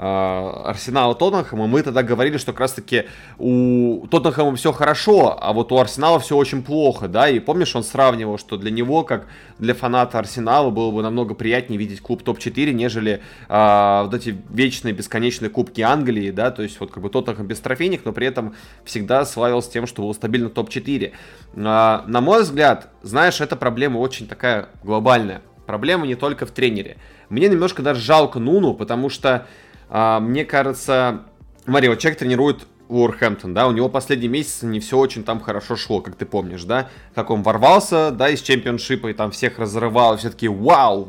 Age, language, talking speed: 20-39, Russian, 185 wpm